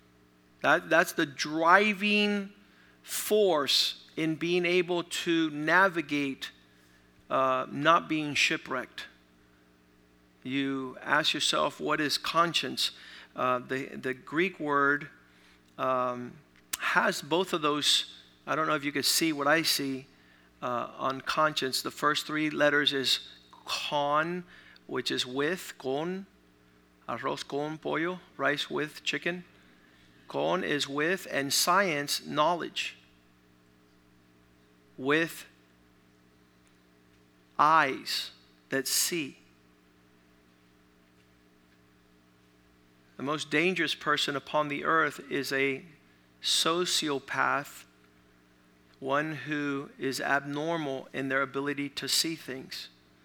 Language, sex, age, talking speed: English, male, 50-69, 100 wpm